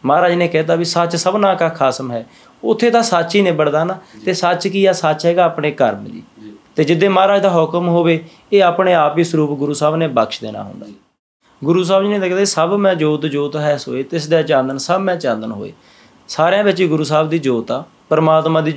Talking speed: 225 wpm